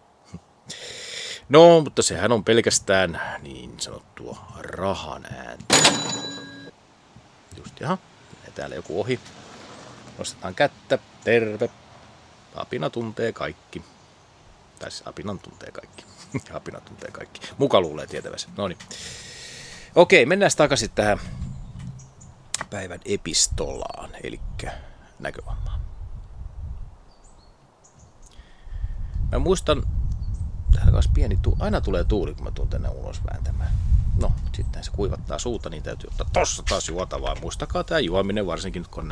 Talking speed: 110 wpm